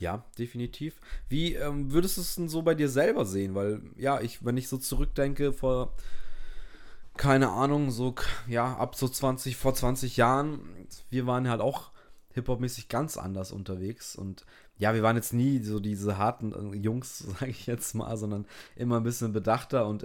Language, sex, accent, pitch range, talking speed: German, male, German, 110-130 Hz, 175 wpm